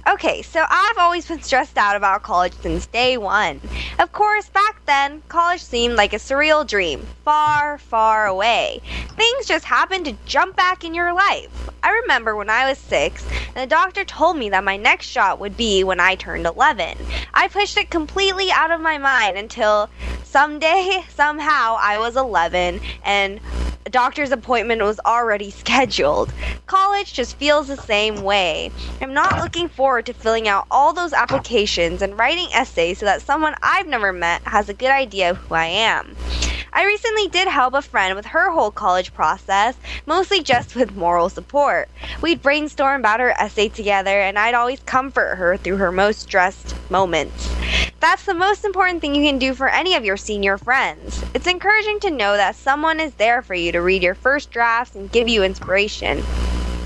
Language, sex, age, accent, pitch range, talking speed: English, female, 20-39, American, 200-320 Hz, 185 wpm